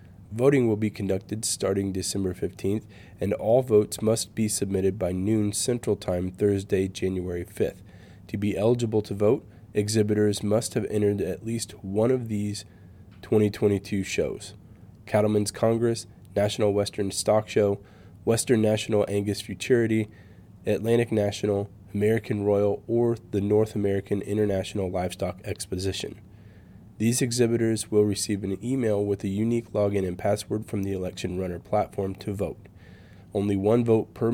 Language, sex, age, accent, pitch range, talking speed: English, male, 20-39, American, 95-110 Hz, 140 wpm